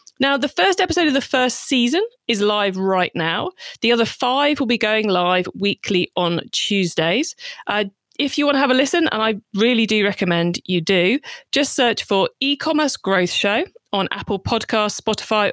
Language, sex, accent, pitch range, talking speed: English, female, British, 185-255 Hz, 180 wpm